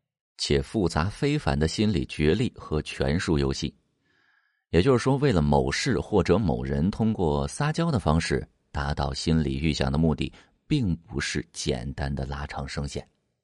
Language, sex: Chinese, male